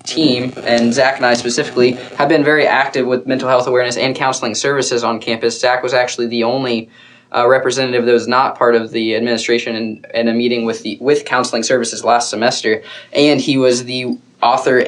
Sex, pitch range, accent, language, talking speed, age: male, 115-130 Hz, American, English, 200 wpm, 20-39